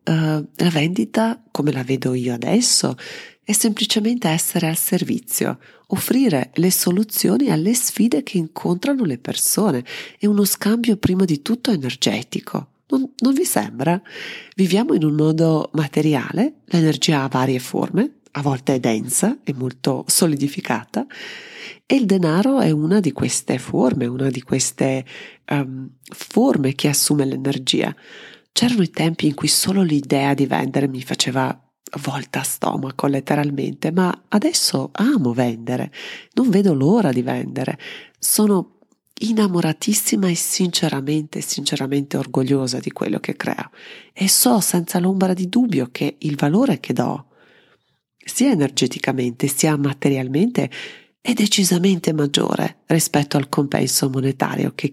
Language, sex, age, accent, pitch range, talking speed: Italian, female, 40-59, native, 140-215 Hz, 130 wpm